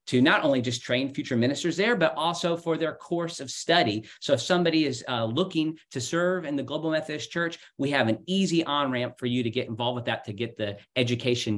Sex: male